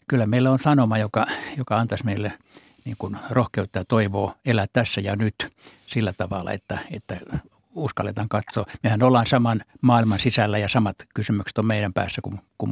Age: 60-79